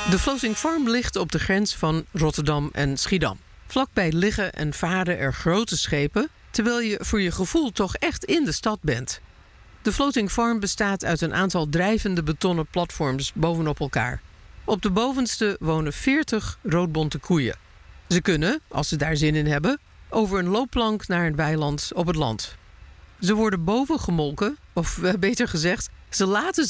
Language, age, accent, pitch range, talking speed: Dutch, 50-69, Dutch, 150-215 Hz, 165 wpm